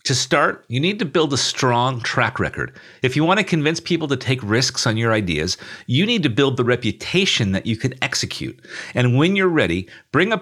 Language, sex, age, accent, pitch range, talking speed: English, male, 50-69, American, 105-140 Hz, 220 wpm